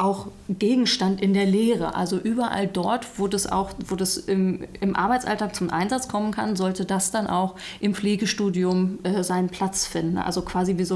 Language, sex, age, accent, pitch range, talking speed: German, female, 30-49, German, 185-210 Hz, 175 wpm